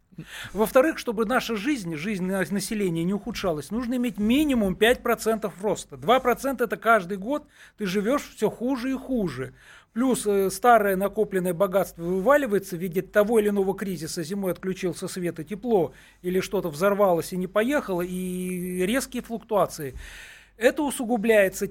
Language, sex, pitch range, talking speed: Russian, male, 180-235 Hz, 140 wpm